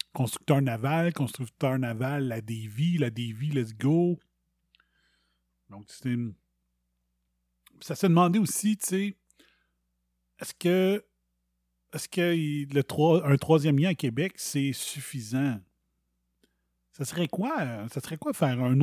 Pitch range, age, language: 105-155 Hz, 30-49, French